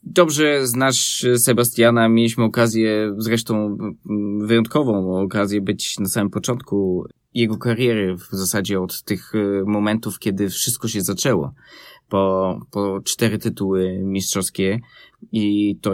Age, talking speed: 20-39, 115 wpm